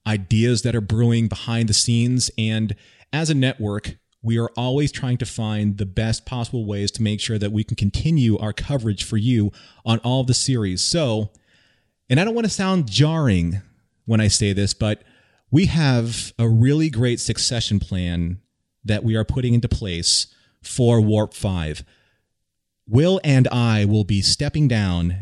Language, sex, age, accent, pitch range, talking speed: English, male, 30-49, American, 105-120 Hz, 170 wpm